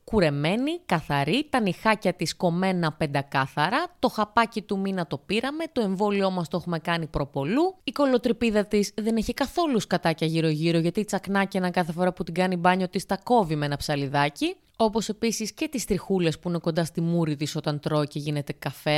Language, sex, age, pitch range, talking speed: Greek, female, 20-39, 160-220 Hz, 185 wpm